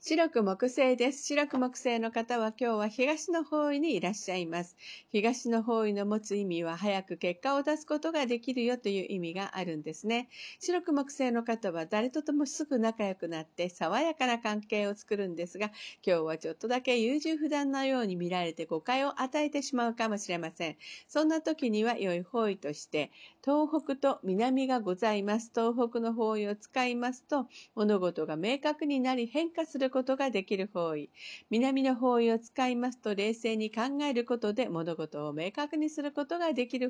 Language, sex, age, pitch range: Japanese, female, 50-69, 190-275 Hz